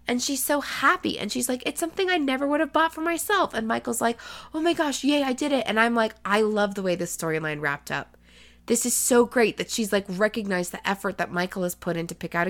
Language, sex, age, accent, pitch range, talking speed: English, female, 20-39, American, 170-240 Hz, 265 wpm